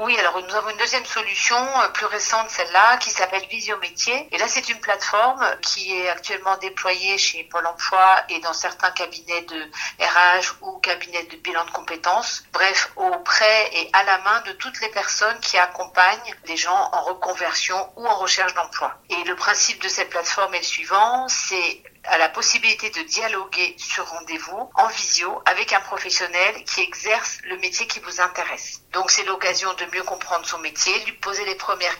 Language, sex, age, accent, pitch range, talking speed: French, female, 50-69, French, 180-225 Hz, 185 wpm